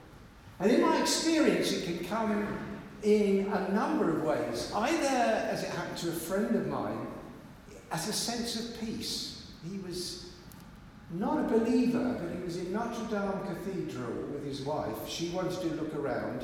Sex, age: male, 60-79